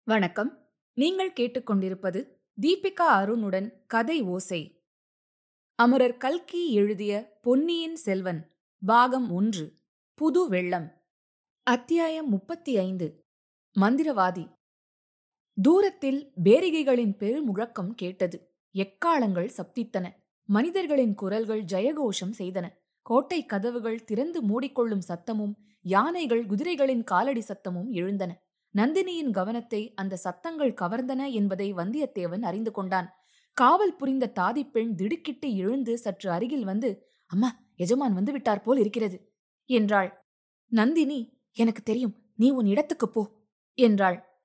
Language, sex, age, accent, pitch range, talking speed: Tamil, female, 20-39, native, 195-260 Hz, 95 wpm